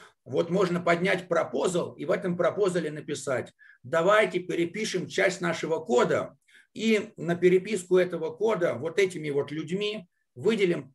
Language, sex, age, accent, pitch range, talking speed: Russian, male, 50-69, native, 160-195 Hz, 130 wpm